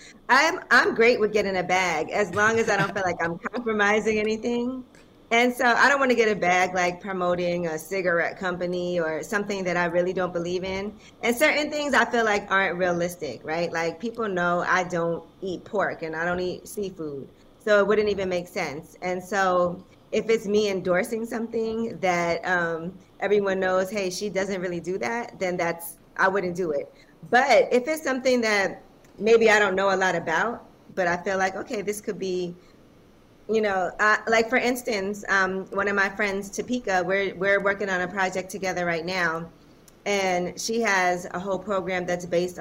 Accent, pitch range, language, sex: American, 175-210 Hz, English, female